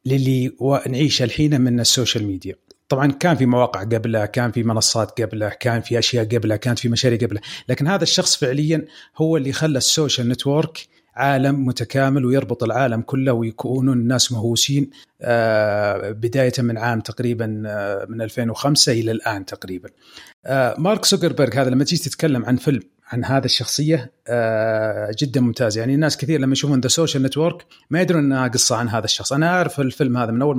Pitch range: 115-145 Hz